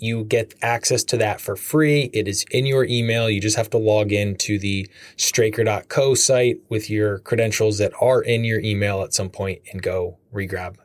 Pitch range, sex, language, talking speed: 95-115 Hz, male, English, 200 wpm